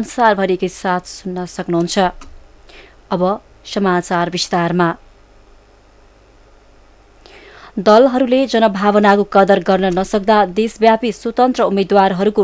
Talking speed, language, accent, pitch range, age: 70 wpm, English, Indian, 185-215 Hz, 20-39